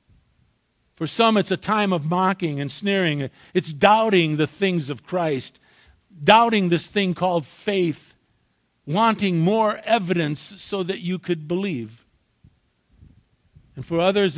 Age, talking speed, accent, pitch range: 50-69, 130 wpm, American, 160-215 Hz